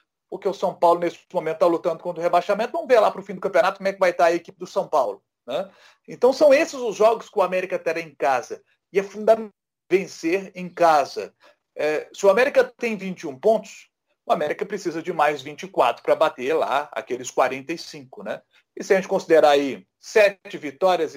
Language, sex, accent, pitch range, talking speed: Portuguese, male, Brazilian, 170-275 Hz, 205 wpm